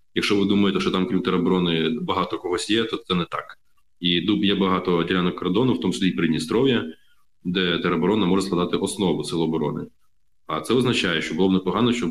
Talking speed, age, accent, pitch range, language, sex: 200 wpm, 20-39, native, 85-100 Hz, Ukrainian, male